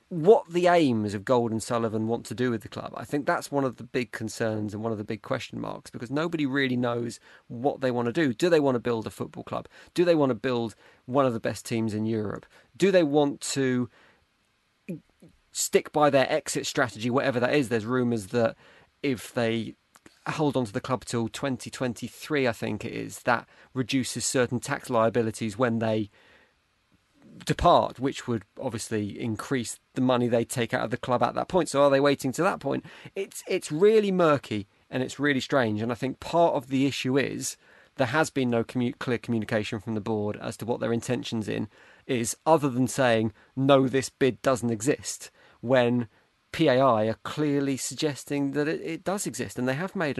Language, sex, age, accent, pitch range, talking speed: English, male, 30-49, British, 115-145 Hz, 200 wpm